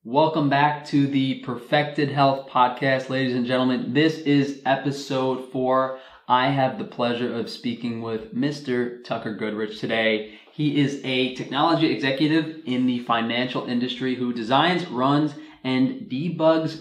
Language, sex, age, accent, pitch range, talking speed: English, male, 20-39, American, 125-145 Hz, 140 wpm